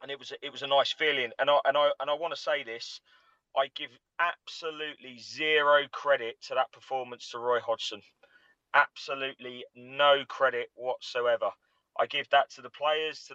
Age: 20-39